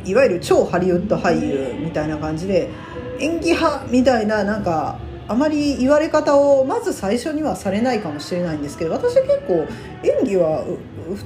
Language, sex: Japanese, female